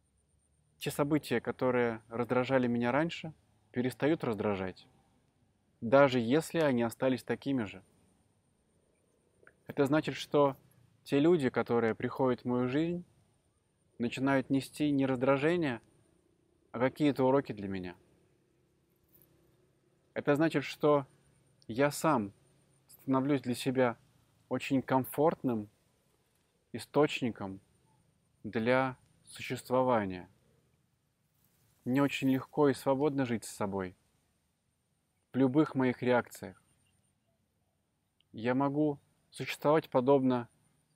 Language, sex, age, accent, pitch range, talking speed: Russian, male, 20-39, native, 115-145 Hz, 90 wpm